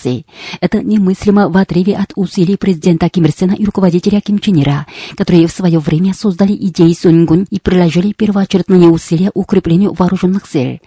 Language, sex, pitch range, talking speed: Russian, female, 170-200 Hz, 145 wpm